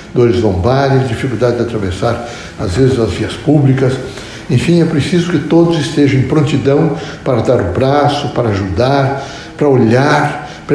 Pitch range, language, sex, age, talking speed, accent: 125-150 Hz, Portuguese, male, 60-79, 150 wpm, Brazilian